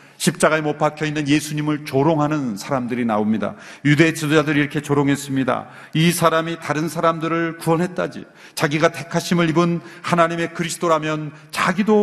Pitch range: 150-195 Hz